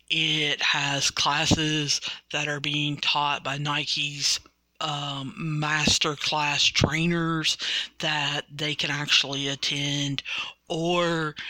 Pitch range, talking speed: 145-170 Hz, 100 wpm